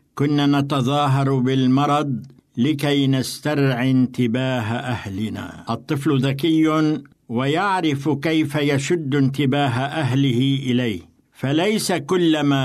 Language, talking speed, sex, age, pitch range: Arabic, 80 wpm, male, 60-79, 130-155 Hz